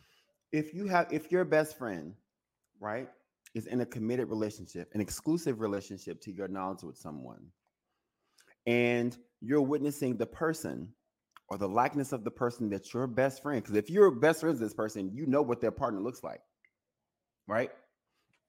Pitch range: 110-155 Hz